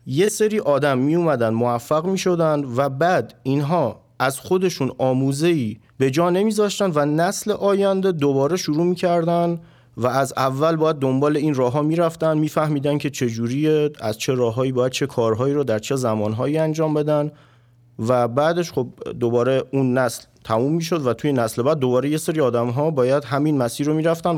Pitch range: 120-160 Hz